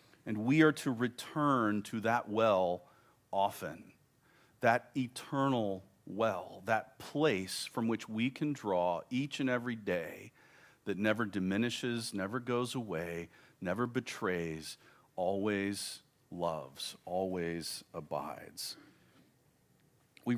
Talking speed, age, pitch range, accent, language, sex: 105 wpm, 40-59, 95-120 Hz, American, English, male